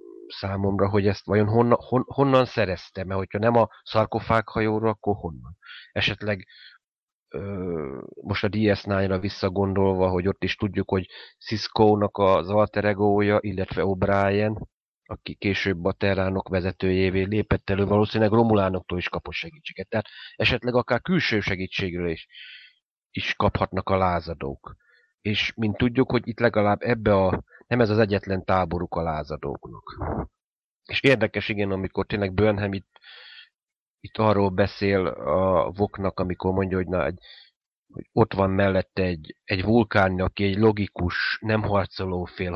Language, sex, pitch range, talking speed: Hungarian, male, 95-110 Hz, 140 wpm